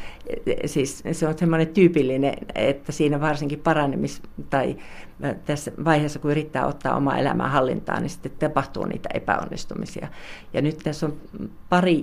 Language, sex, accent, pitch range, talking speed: Finnish, female, native, 140-165 Hz, 140 wpm